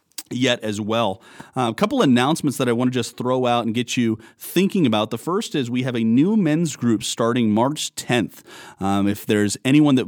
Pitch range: 110-135 Hz